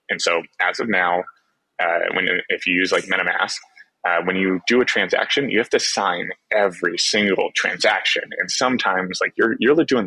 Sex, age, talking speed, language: male, 20-39, 185 wpm, English